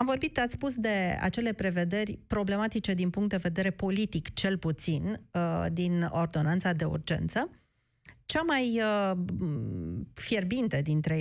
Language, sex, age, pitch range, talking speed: Romanian, female, 30-49, 170-225 Hz, 125 wpm